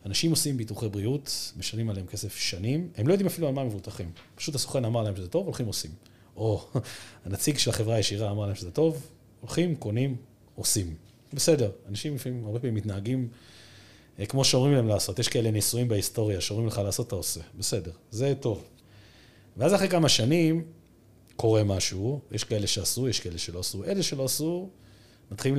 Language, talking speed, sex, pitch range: Hebrew, 175 wpm, male, 105-150 Hz